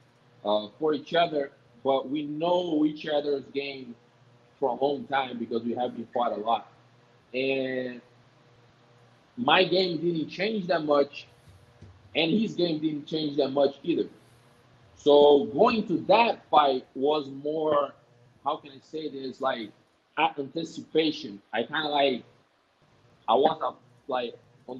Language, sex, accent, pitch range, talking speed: English, male, Brazilian, 120-155 Hz, 140 wpm